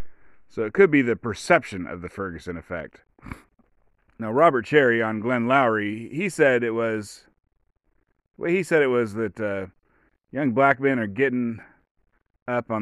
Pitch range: 105-135 Hz